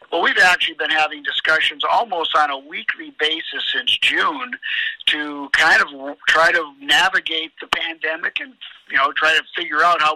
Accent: American